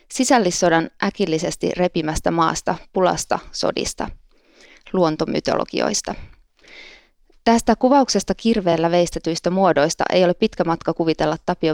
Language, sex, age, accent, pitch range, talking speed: Finnish, female, 20-39, native, 165-195 Hz, 90 wpm